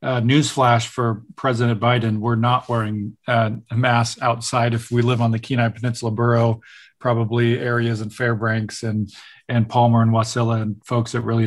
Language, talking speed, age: English, 165 wpm, 40-59